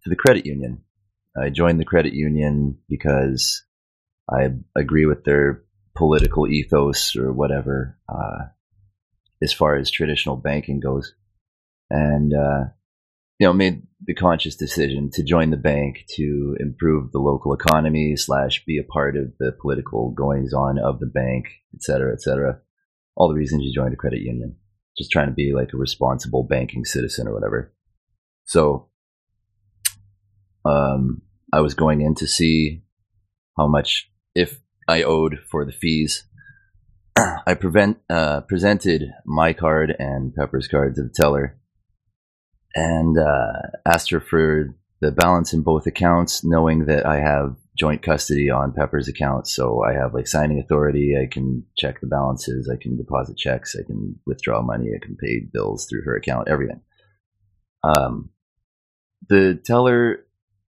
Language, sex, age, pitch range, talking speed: English, male, 30-49, 70-85 Hz, 150 wpm